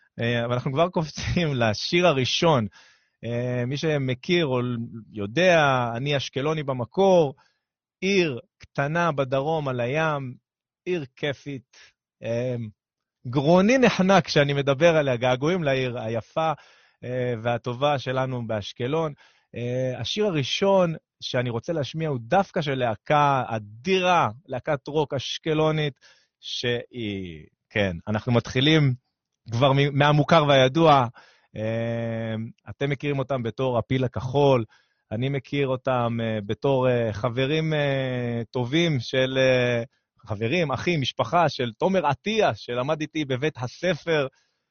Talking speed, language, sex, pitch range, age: 100 wpm, Hebrew, male, 120-150 Hz, 30-49